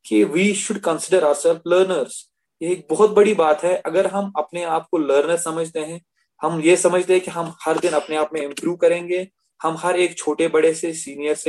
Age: 20-39